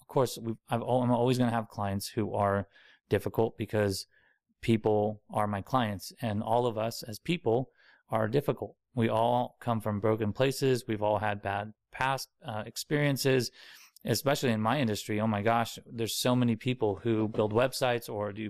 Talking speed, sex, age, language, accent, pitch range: 170 wpm, male, 30-49, English, American, 105-115 Hz